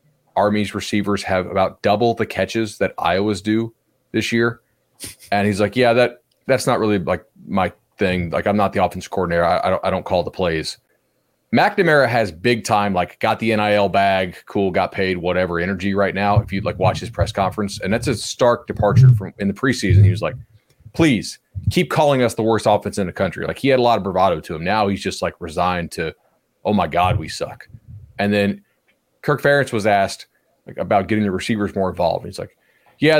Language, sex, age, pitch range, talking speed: English, male, 30-49, 95-120 Hz, 215 wpm